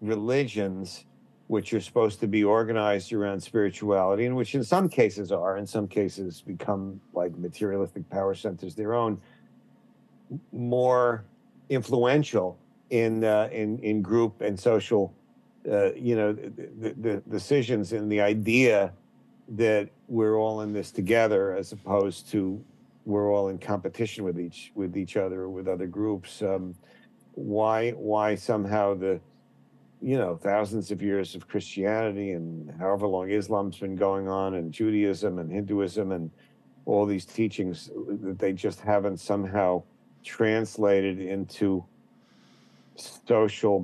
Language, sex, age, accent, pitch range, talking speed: English, male, 50-69, American, 95-110 Hz, 135 wpm